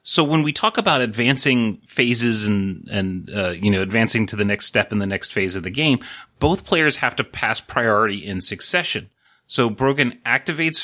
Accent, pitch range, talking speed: American, 105-135 Hz, 195 wpm